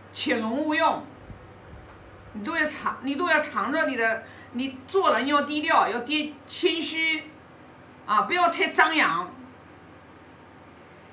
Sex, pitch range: female, 235-335 Hz